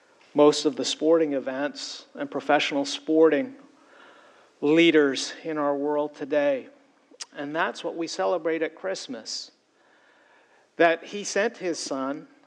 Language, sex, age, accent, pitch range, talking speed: English, male, 50-69, American, 150-180 Hz, 120 wpm